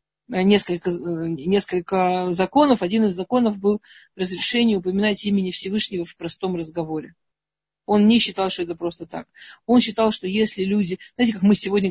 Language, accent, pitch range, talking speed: Russian, native, 180-215 Hz, 150 wpm